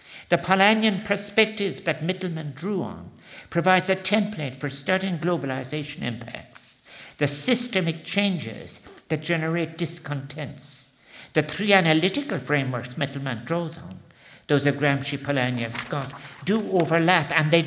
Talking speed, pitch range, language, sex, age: 125 wpm, 140-180 Hz, English, male, 60-79